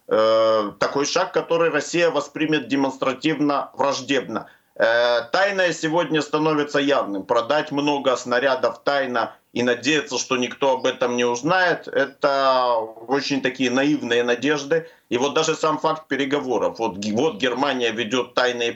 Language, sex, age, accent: Ukrainian, male, 50-69, native